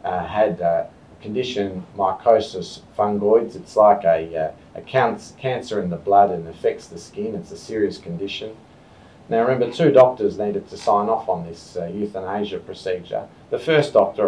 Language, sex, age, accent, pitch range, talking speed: English, male, 40-59, Australian, 100-125 Hz, 170 wpm